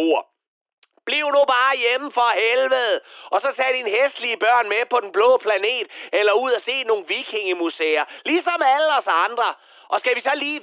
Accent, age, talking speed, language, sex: native, 30-49, 185 wpm, Danish, male